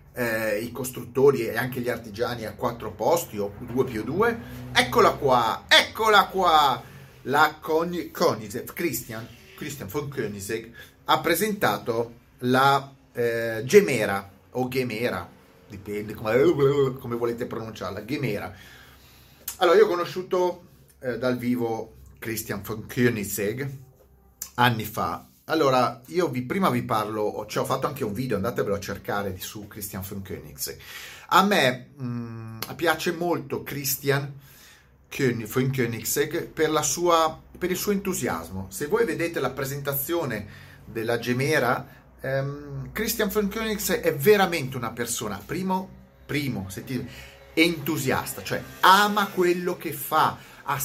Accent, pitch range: native, 110-160 Hz